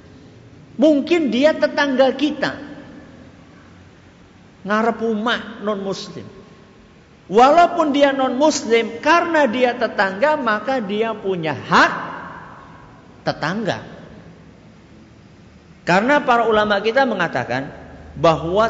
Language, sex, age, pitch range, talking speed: Malay, male, 50-69, 150-220 Hz, 85 wpm